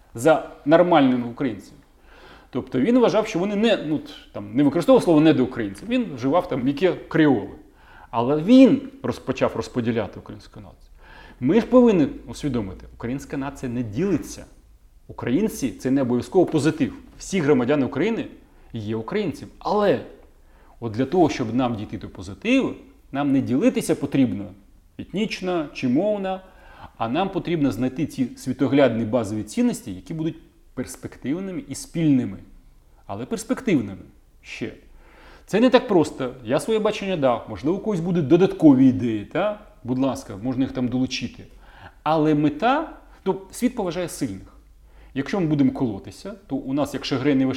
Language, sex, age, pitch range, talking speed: Ukrainian, male, 30-49, 115-190 Hz, 145 wpm